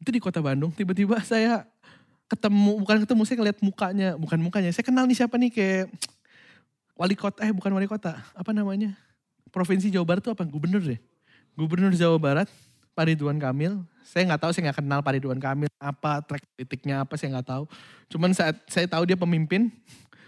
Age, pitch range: 20-39, 140-200 Hz